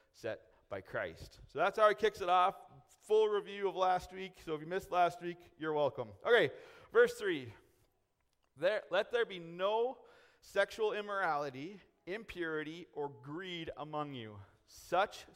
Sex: male